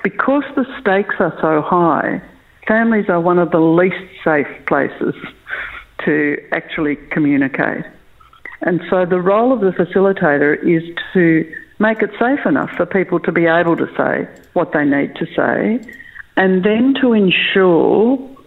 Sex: female